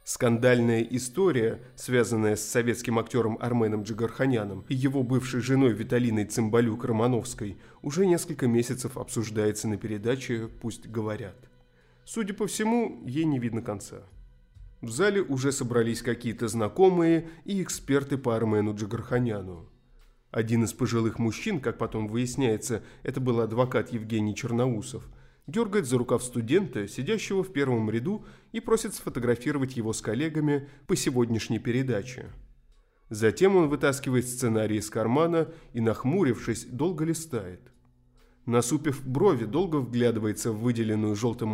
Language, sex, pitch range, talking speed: Russian, male, 110-135 Hz, 125 wpm